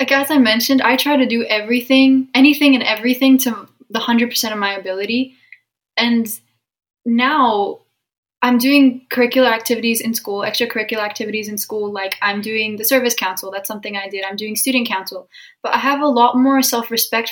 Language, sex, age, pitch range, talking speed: English, female, 10-29, 215-255 Hz, 175 wpm